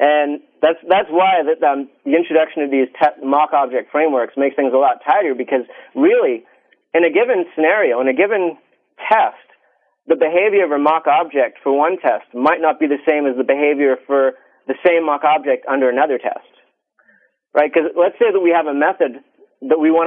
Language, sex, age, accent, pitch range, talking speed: English, male, 40-59, American, 140-180 Hz, 195 wpm